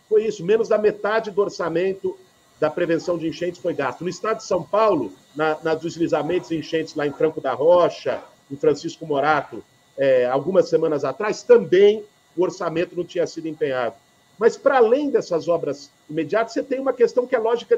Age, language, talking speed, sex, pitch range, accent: 50-69, Portuguese, 190 wpm, male, 165-220 Hz, Brazilian